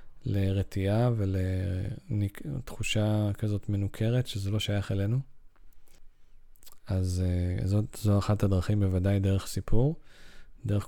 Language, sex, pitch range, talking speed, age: Hebrew, male, 100-115 Hz, 90 wpm, 20-39